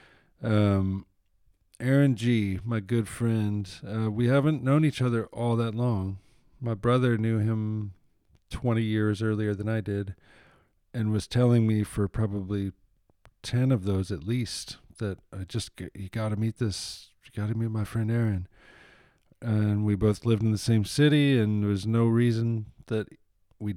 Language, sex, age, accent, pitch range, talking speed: English, male, 40-59, American, 100-120 Hz, 160 wpm